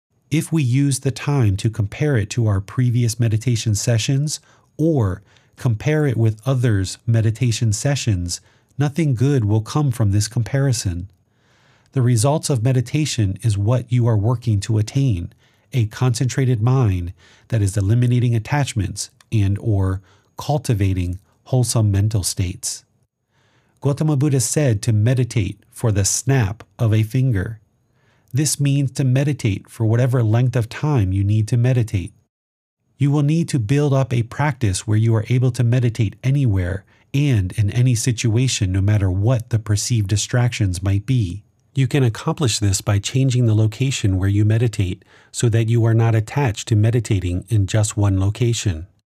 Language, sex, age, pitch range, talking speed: English, male, 40-59, 105-130 Hz, 155 wpm